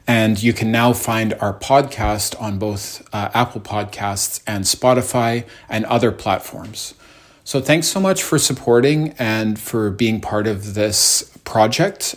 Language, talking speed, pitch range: English, 150 wpm, 100-115 Hz